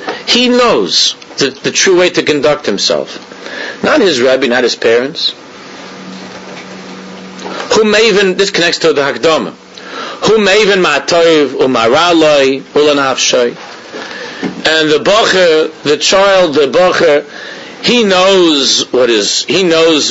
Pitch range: 140-190 Hz